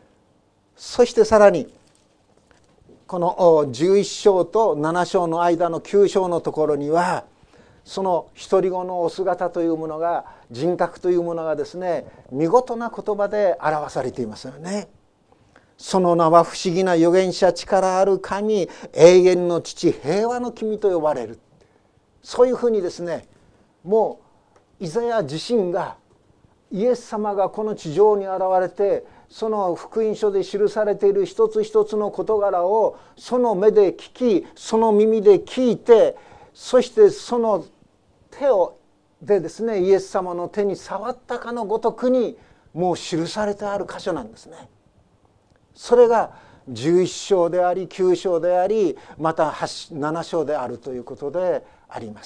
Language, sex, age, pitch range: Japanese, male, 50-69, 170-220 Hz